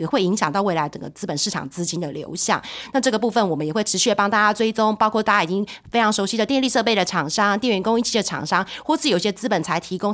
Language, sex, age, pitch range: Chinese, female, 30-49, 180-230 Hz